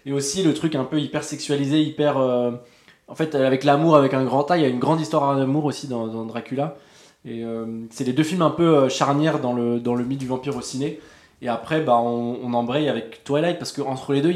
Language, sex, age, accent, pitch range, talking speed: French, male, 20-39, French, 125-150 Hz, 250 wpm